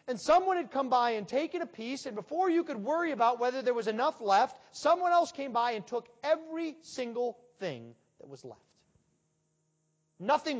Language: English